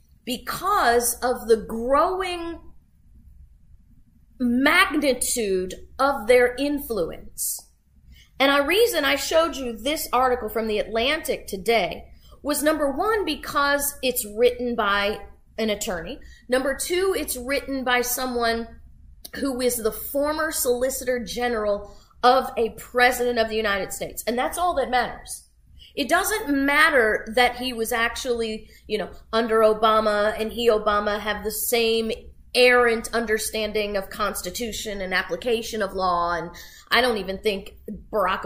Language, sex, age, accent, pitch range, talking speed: English, female, 30-49, American, 200-255 Hz, 130 wpm